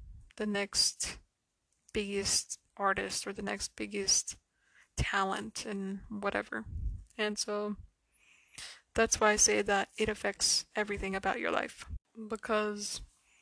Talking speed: 110 wpm